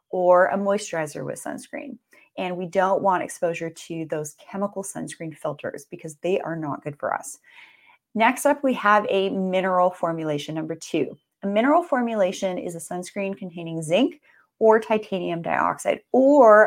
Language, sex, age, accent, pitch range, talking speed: English, female, 30-49, American, 180-240 Hz, 155 wpm